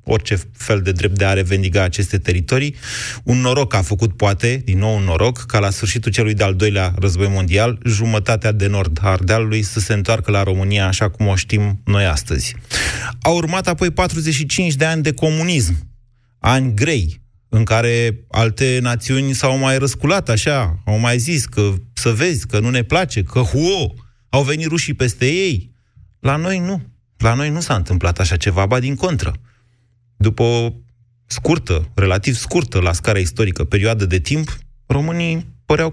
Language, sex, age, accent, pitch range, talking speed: Romanian, male, 30-49, native, 100-125 Hz, 170 wpm